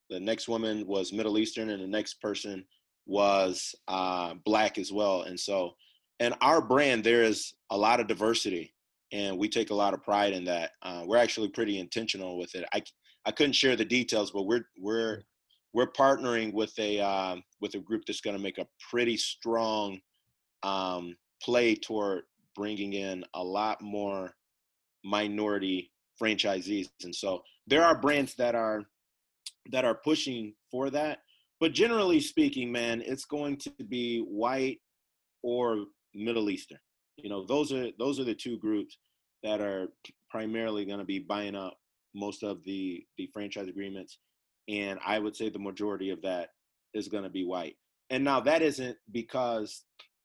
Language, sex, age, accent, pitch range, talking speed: English, male, 30-49, American, 100-120 Hz, 170 wpm